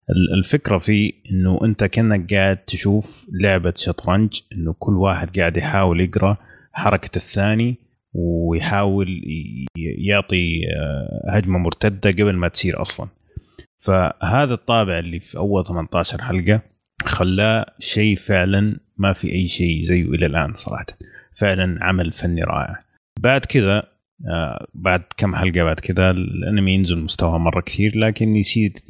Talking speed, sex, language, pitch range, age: 125 wpm, male, Arabic, 85-100 Hz, 30-49